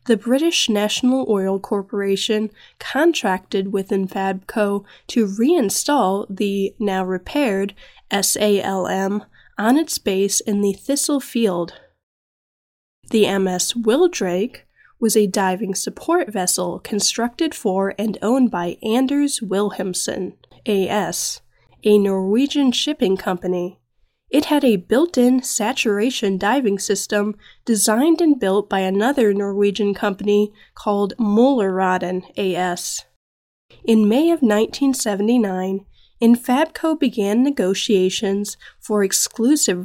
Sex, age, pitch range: female, 10-29, 195-250 Hz